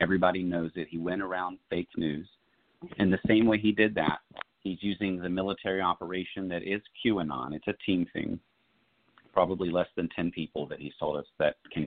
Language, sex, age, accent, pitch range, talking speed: English, male, 40-59, American, 80-95 Hz, 190 wpm